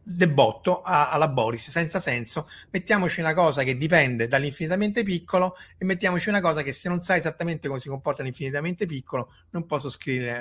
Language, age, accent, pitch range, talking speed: Italian, 30-49, native, 130-170 Hz, 165 wpm